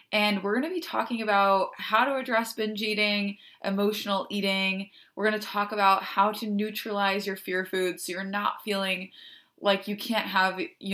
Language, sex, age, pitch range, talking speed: English, female, 20-39, 185-220 Hz, 185 wpm